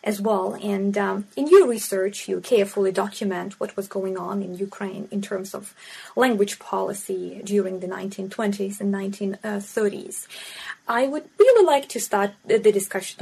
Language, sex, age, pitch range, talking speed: English, female, 20-39, 200-230 Hz, 155 wpm